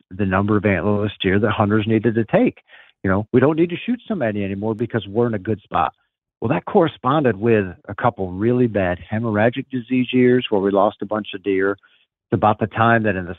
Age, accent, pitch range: 50-69, American, 105-135 Hz